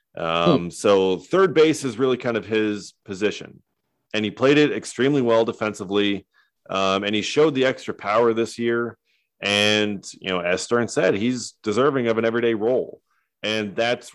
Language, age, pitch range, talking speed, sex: English, 30-49, 95-120 Hz, 170 wpm, male